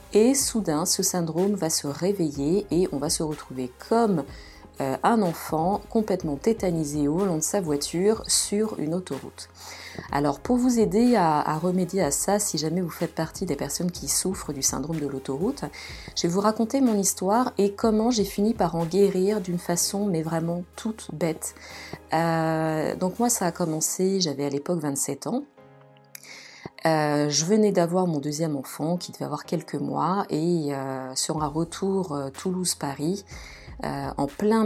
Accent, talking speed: French, 170 wpm